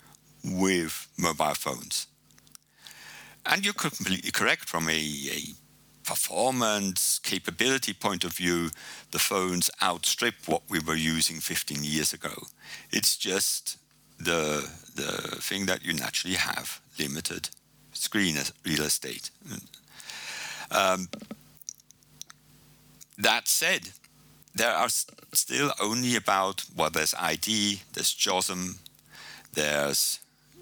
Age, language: 60-79, English